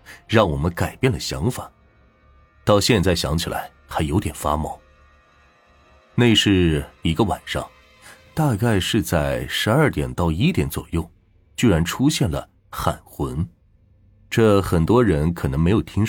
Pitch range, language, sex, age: 75-105 Hz, Chinese, male, 30-49